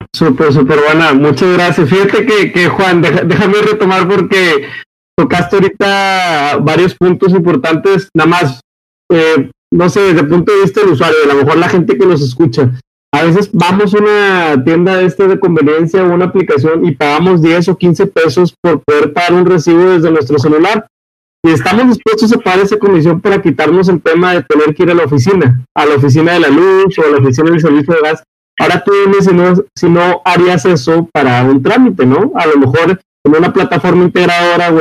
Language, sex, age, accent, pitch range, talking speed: Spanish, male, 30-49, Mexican, 155-190 Hz, 195 wpm